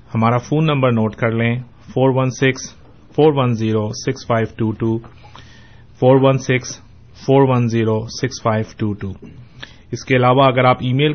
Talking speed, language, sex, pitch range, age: 80 wpm, Urdu, male, 110-125 Hz, 30-49